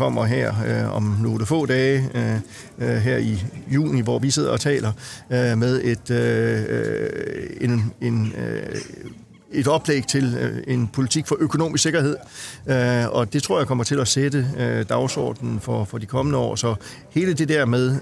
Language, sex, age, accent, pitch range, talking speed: Danish, male, 40-59, native, 115-140 Hz, 145 wpm